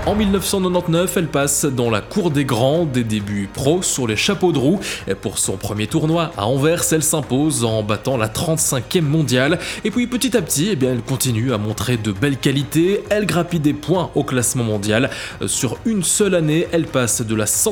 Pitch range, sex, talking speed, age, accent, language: 115-170 Hz, male, 205 wpm, 20-39, French, English